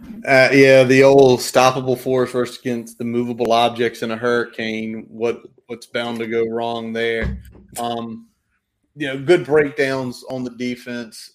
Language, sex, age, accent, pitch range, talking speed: English, male, 30-49, American, 115-130 Hz, 155 wpm